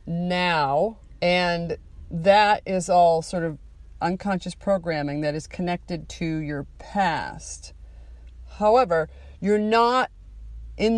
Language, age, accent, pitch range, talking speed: English, 40-59, American, 155-195 Hz, 105 wpm